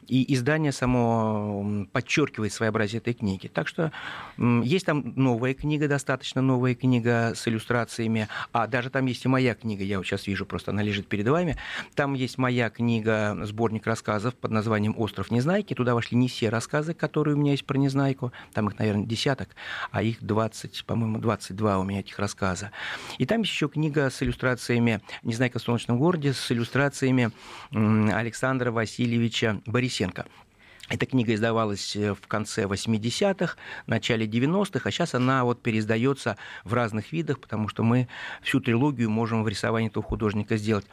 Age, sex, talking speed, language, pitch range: 40-59, male, 165 wpm, Russian, 110-130 Hz